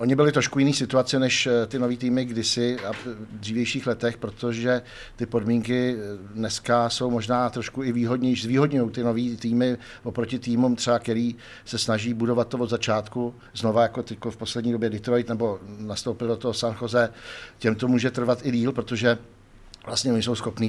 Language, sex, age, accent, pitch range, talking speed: Czech, male, 50-69, native, 110-125 Hz, 175 wpm